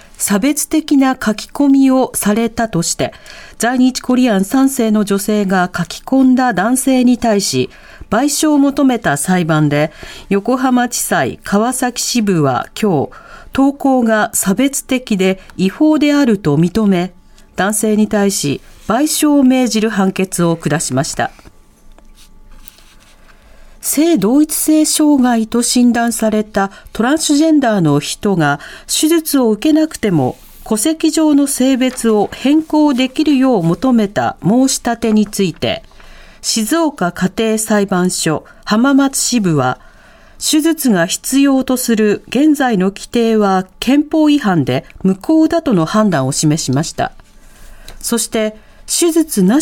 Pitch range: 190-275 Hz